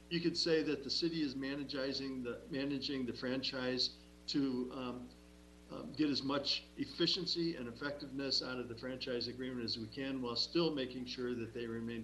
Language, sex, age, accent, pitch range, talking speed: English, male, 50-69, American, 115-135 Hz, 175 wpm